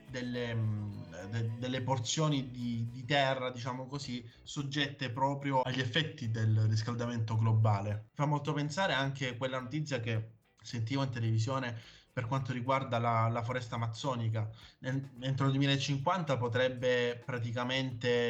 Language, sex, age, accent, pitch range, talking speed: Italian, male, 20-39, native, 115-135 Hz, 130 wpm